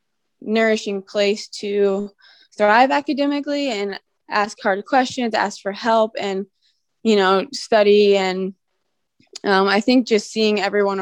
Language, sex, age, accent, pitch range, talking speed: English, female, 20-39, American, 195-220 Hz, 125 wpm